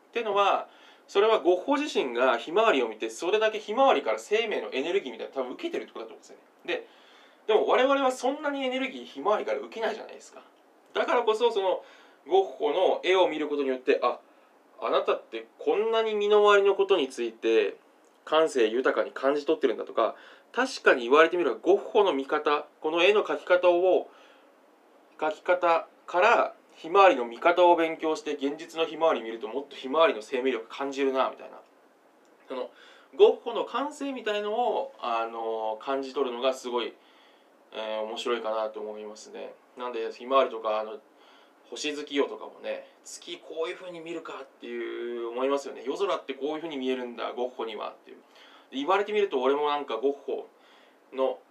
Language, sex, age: Japanese, male, 20-39